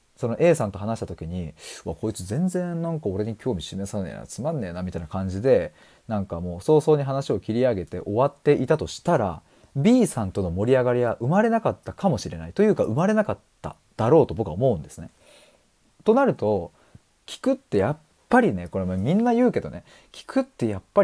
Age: 30-49